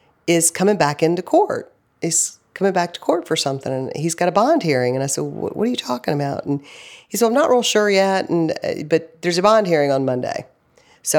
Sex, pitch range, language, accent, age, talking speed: female, 130-165 Hz, English, American, 40-59, 240 wpm